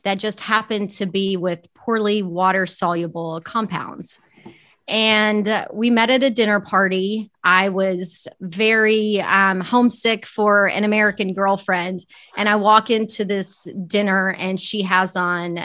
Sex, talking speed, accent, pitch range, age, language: female, 140 wpm, American, 180-220 Hz, 30-49, English